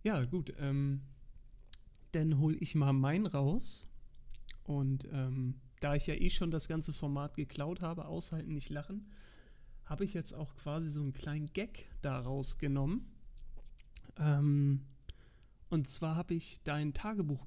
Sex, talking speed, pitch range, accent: male, 140 wpm, 130-160 Hz, German